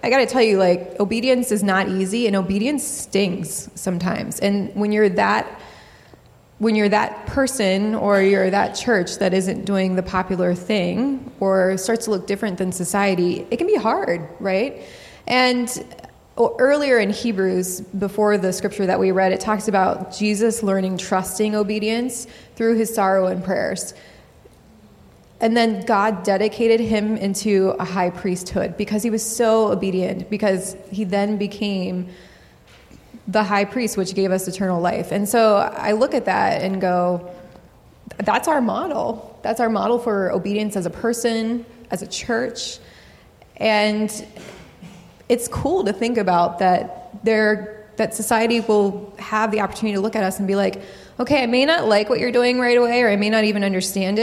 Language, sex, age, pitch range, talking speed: English, female, 20-39, 190-225 Hz, 165 wpm